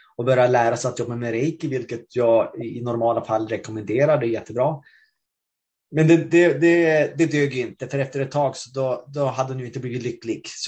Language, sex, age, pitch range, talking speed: Swedish, male, 30-49, 125-150 Hz, 200 wpm